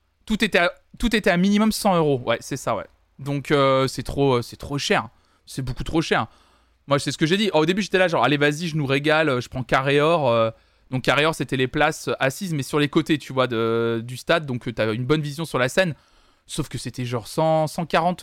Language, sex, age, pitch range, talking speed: French, male, 20-39, 125-170 Hz, 240 wpm